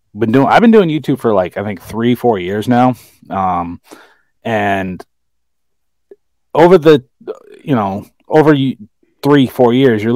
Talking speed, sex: 150 wpm, male